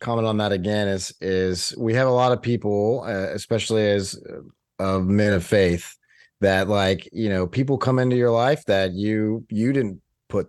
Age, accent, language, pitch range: 30-49, American, English, 95-110 Hz